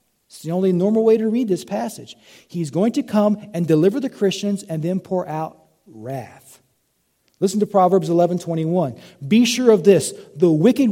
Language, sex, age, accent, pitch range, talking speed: English, male, 40-59, American, 150-210 Hz, 185 wpm